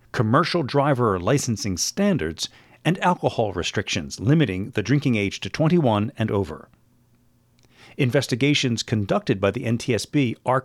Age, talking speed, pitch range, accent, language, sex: 40-59, 120 wpm, 115-155 Hz, American, English, male